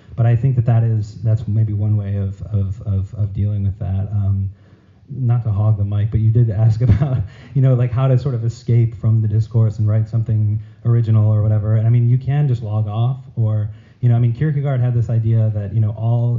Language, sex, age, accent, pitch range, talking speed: English, male, 30-49, American, 105-115 Hz, 240 wpm